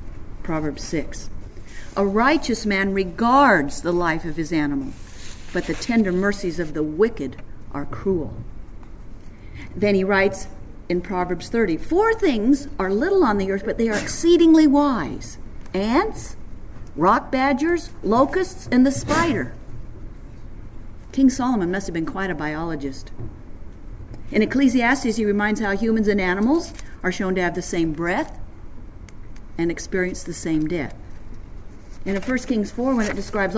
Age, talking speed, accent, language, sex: 50-69, 145 wpm, American, English, female